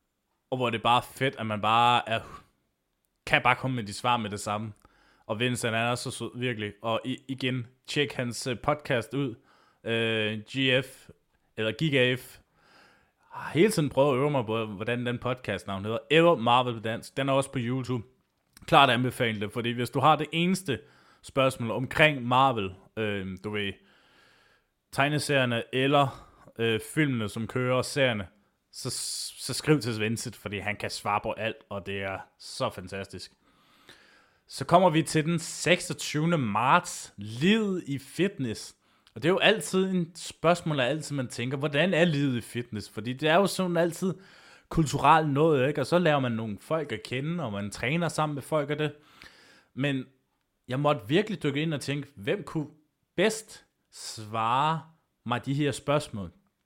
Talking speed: 170 wpm